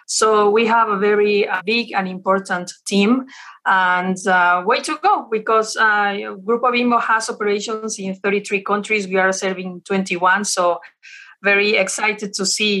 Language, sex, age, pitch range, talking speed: English, female, 30-49, 190-225 Hz, 150 wpm